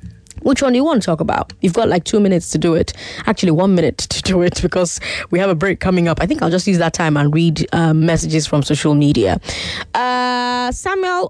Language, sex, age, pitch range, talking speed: English, female, 20-39, 160-230 Hz, 240 wpm